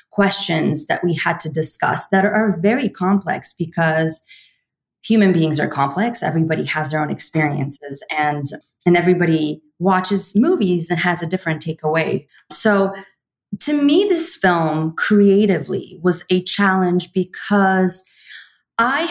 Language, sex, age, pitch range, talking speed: English, female, 30-49, 160-210 Hz, 130 wpm